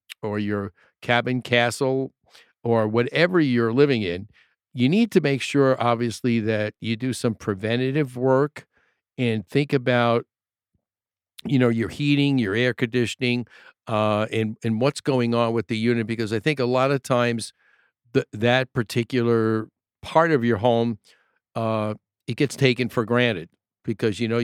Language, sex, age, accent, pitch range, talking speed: English, male, 50-69, American, 115-130 Hz, 150 wpm